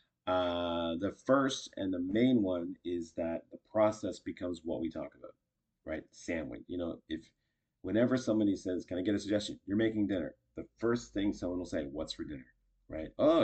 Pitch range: 90-125 Hz